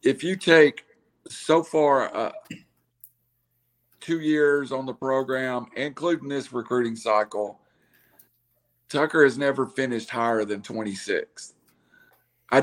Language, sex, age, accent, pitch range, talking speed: English, male, 50-69, American, 115-150 Hz, 110 wpm